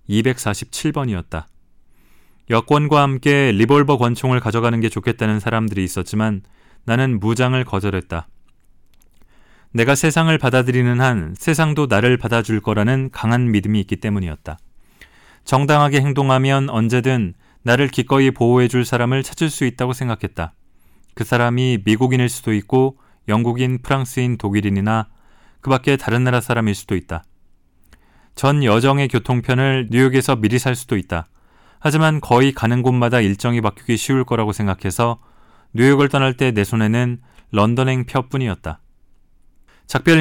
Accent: native